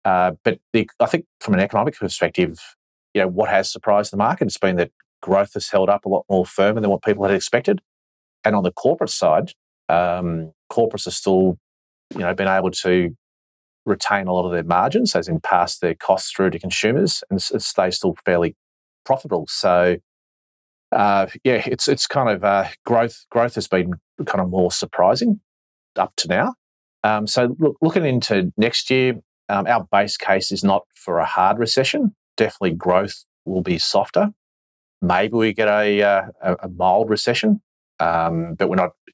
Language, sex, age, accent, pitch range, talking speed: English, male, 40-59, Australian, 85-115 Hz, 185 wpm